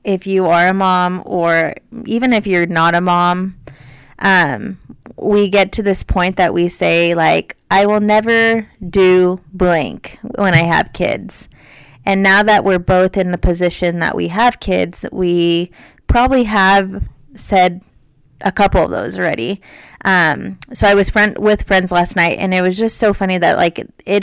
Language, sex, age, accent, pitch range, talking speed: English, female, 20-39, American, 175-215 Hz, 175 wpm